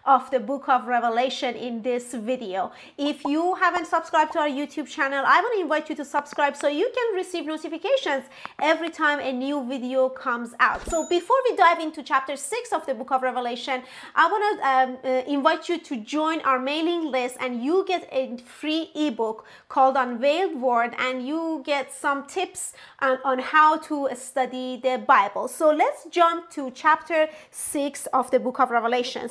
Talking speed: 180 wpm